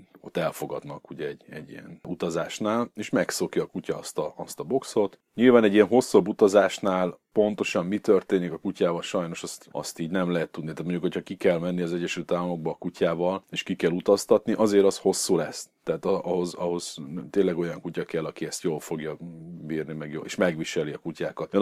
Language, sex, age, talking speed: Hungarian, male, 40-59, 190 wpm